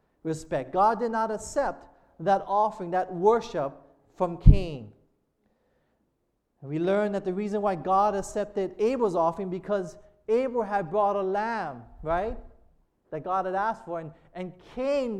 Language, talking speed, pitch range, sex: English, 140 wpm, 185-230 Hz, male